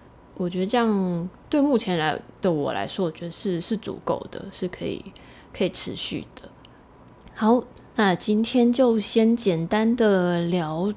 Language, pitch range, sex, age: Chinese, 180-225 Hz, female, 10-29